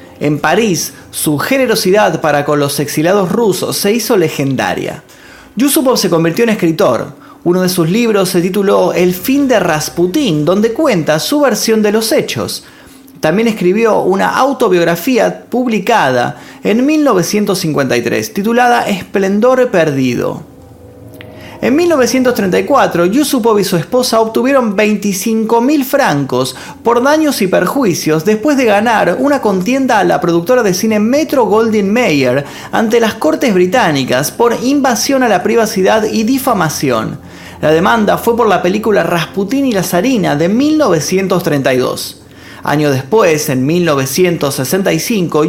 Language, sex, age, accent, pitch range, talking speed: Spanish, male, 30-49, Argentinian, 155-240 Hz, 130 wpm